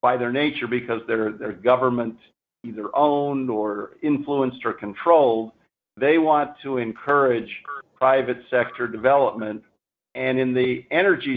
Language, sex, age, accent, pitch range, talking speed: English, male, 50-69, American, 120-140 Hz, 125 wpm